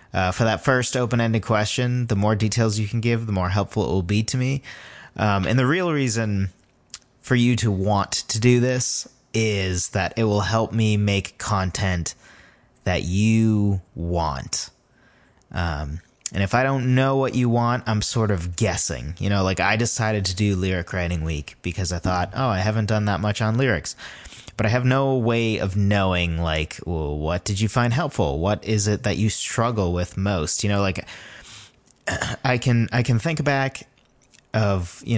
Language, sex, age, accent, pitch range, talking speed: English, male, 30-49, American, 95-115 Hz, 190 wpm